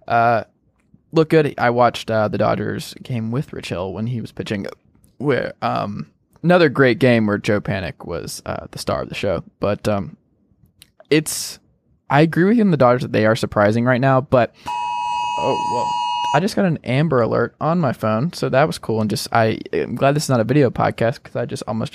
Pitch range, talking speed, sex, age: 110-140 Hz, 210 wpm, male, 20-39